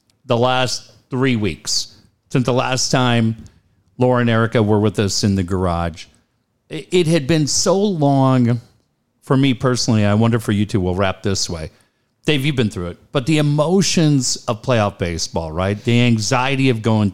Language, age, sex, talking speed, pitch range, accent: English, 50-69, male, 175 wpm, 100-125 Hz, American